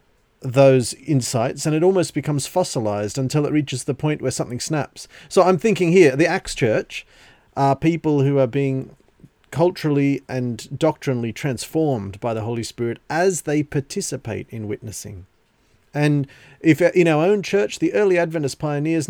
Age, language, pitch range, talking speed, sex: 40-59, English, 130-165 Hz, 155 wpm, male